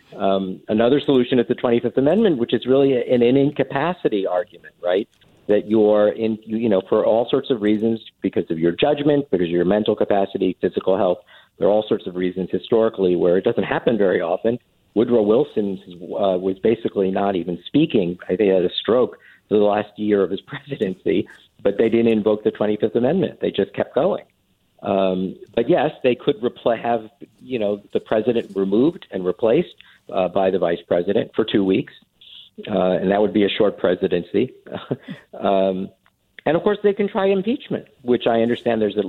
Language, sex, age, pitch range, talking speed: English, male, 50-69, 95-120 Hz, 190 wpm